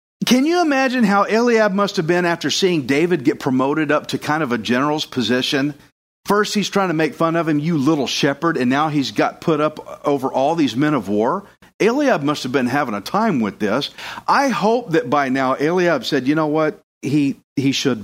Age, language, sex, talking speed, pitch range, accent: 50-69, English, male, 215 wpm, 140-215 Hz, American